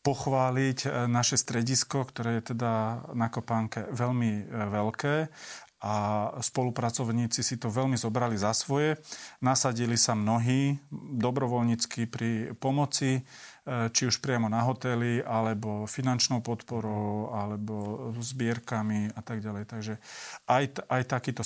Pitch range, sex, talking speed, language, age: 110-130 Hz, male, 115 wpm, Slovak, 40-59